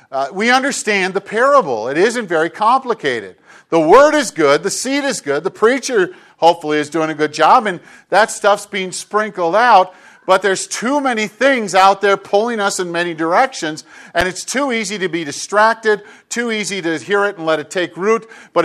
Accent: American